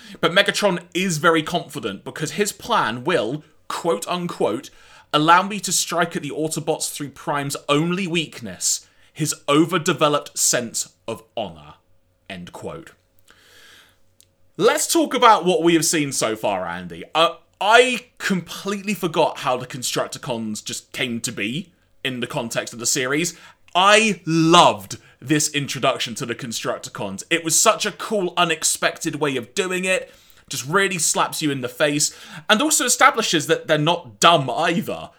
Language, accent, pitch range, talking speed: English, British, 135-195 Hz, 150 wpm